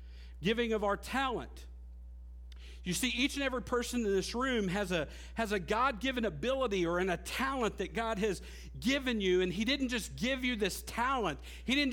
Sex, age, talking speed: male, 50-69, 190 wpm